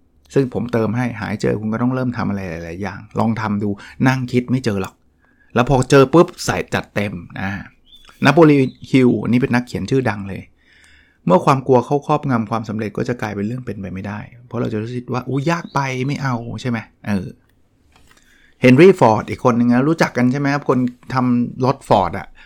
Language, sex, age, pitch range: Thai, male, 20-39, 105-130 Hz